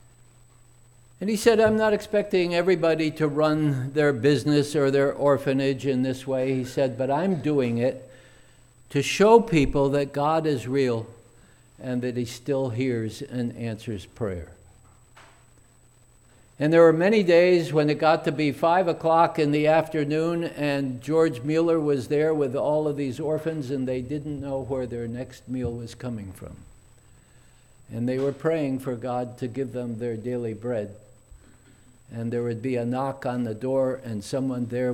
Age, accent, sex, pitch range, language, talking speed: 60-79, American, male, 120-150 Hz, English, 170 wpm